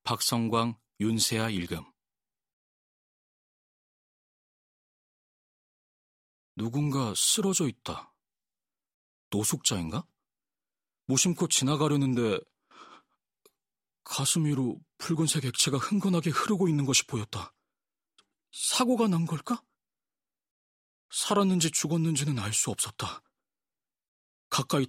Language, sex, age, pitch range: Korean, male, 40-59, 105-150 Hz